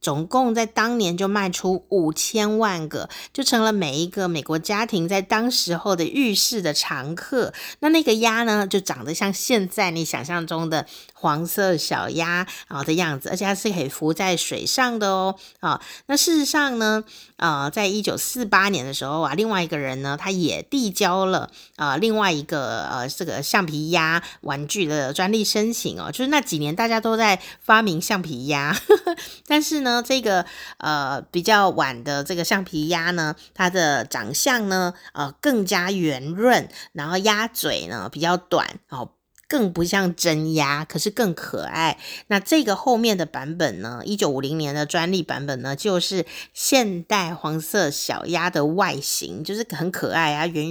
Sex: female